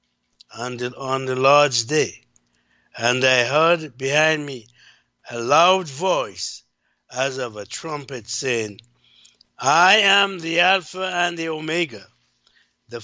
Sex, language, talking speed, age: male, English, 125 wpm, 60-79